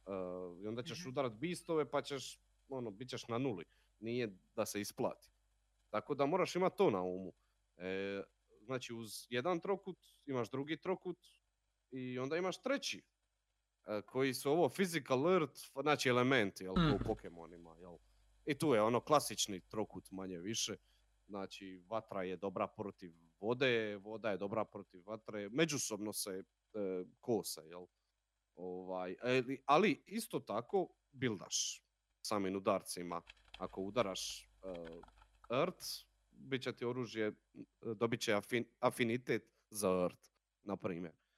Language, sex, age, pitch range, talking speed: Croatian, male, 30-49, 100-145 Hz, 130 wpm